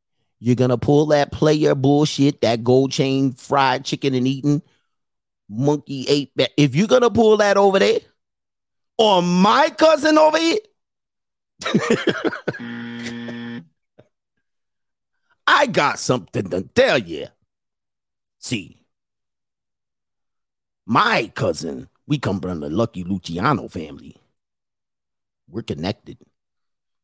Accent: American